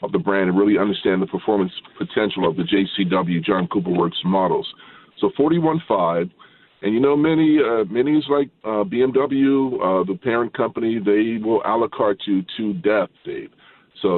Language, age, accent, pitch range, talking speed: English, 40-59, American, 95-115 Hz, 175 wpm